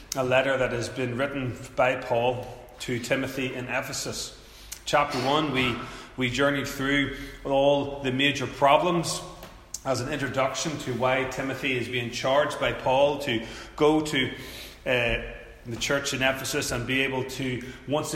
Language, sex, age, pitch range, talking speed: English, male, 30-49, 130-145 Hz, 150 wpm